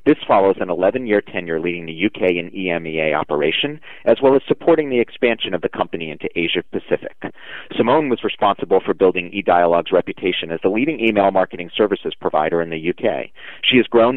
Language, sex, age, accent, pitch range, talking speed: English, male, 30-49, American, 85-115 Hz, 180 wpm